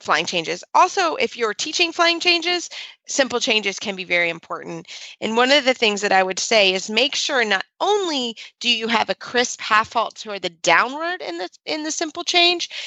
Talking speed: 200 wpm